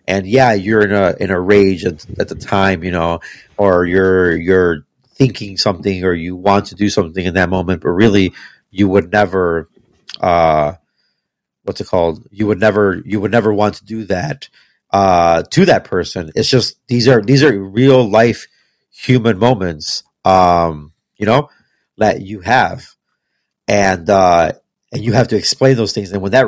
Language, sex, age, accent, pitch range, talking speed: English, male, 30-49, American, 95-115 Hz, 180 wpm